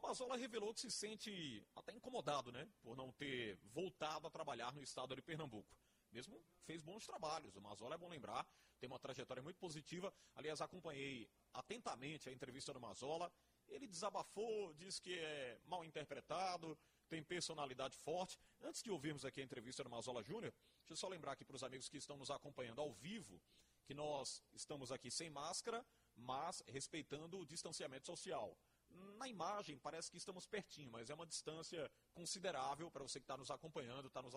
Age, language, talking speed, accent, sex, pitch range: 40-59, Portuguese, 180 wpm, Brazilian, male, 135-180 Hz